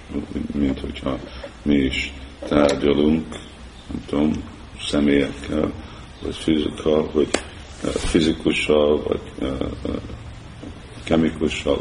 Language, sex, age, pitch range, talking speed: Hungarian, male, 50-69, 65-75 Hz, 70 wpm